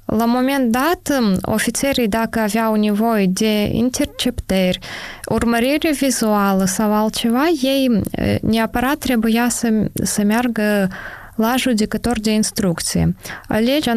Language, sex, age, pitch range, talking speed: Romanian, female, 20-39, 215-245 Hz, 105 wpm